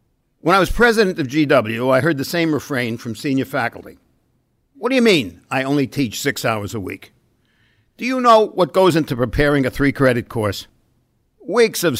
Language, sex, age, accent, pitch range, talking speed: English, male, 60-79, American, 125-165 Hz, 190 wpm